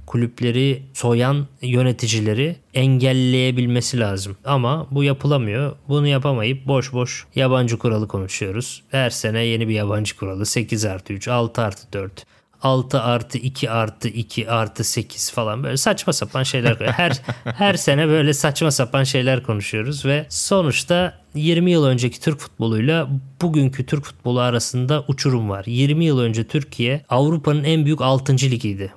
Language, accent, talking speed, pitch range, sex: Turkish, native, 145 wpm, 115-145 Hz, male